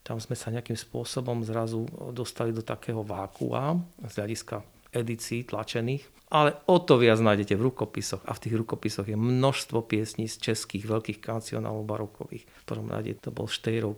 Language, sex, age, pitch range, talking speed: Slovak, male, 40-59, 110-120 Hz, 165 wpm